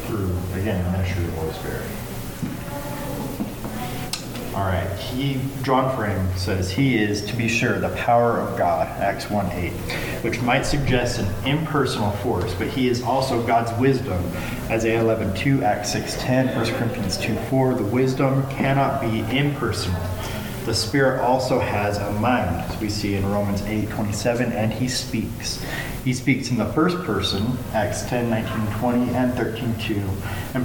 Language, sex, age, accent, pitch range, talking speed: English, male, 30-49, American, 100-125 Hz, 160 wpm